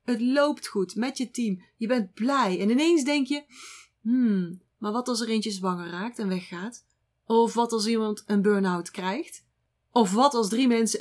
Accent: Dutch